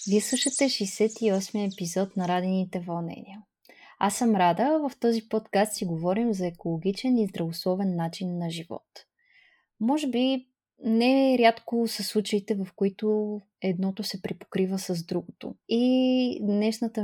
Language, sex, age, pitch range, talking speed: Bulgarian, female, 20-39, 190-235 Hz, 130 wpm